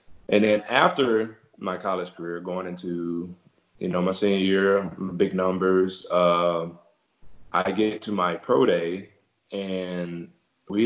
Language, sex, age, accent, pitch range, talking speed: English, male, 20-39, American, 90-105 Hz, 135 wpm